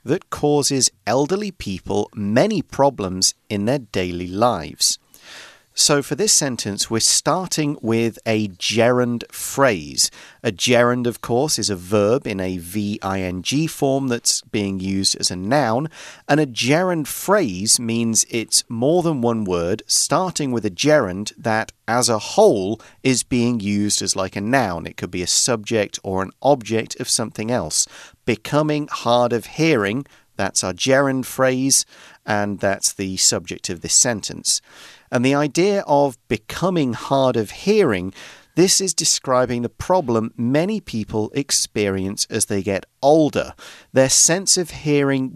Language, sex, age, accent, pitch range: Chinese, male, 40-59, British, 105-140 Hz